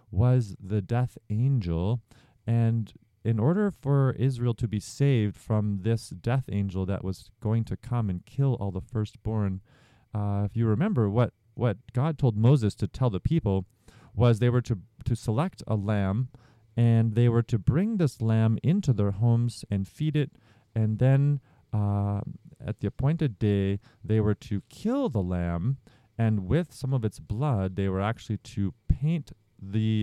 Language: English